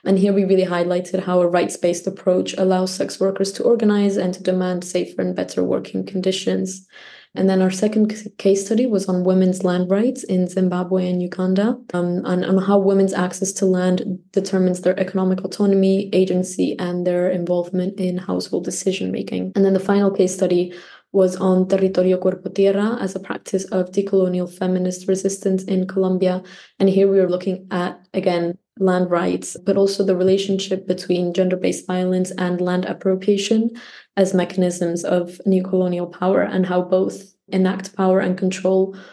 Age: 20-39